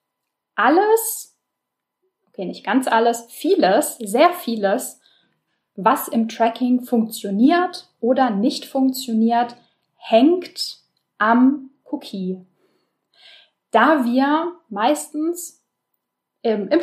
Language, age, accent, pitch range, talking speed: German, 10-29, German, 205-295 Hz, 80 wpm